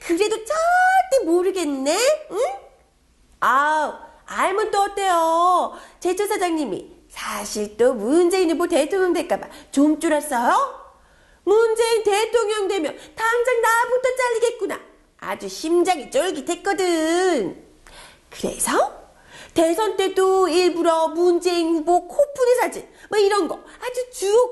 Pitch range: 315-415 Hz